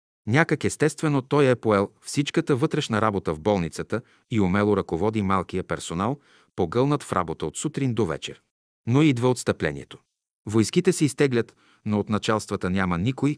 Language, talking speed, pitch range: Bulgarian, 150 wpm, 95-120 Hz